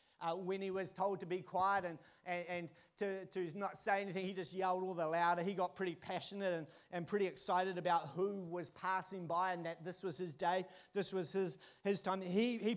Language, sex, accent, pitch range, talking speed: English, male, Australian, 180-220 Hz, 225 wpm